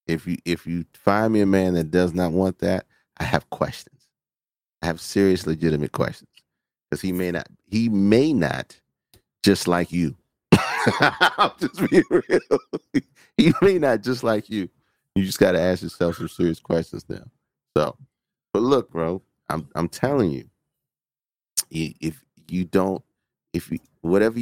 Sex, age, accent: male, 30-49, American